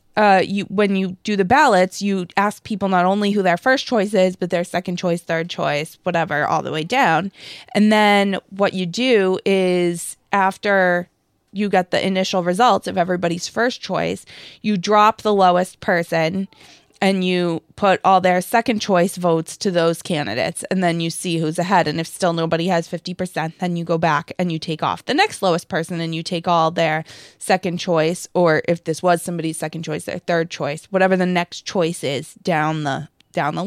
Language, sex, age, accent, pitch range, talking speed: English, female, 20-39, American, 175-205 Hz, 200 wpm